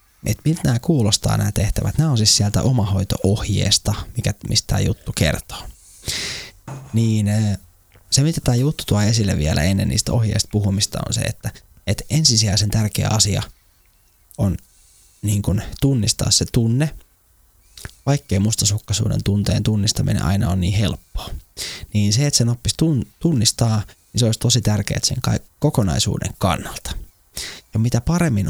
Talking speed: 135 wpm